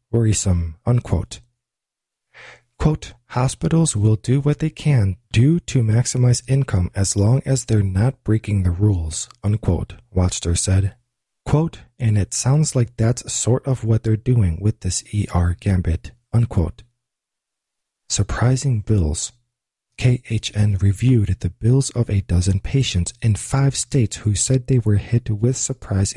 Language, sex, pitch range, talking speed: English, male, 95-125 Hz, 140 wpm